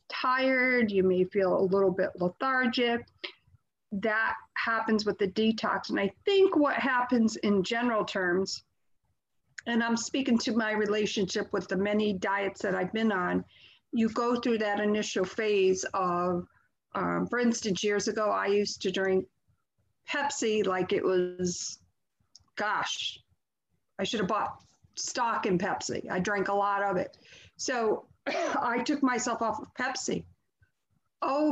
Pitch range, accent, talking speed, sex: 195-235 Hz, American, 145 wpm, female